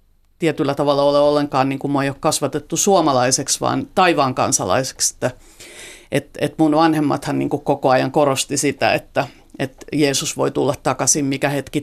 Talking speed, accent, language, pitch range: 130 wpm, native, Finnish, 135-160 Hz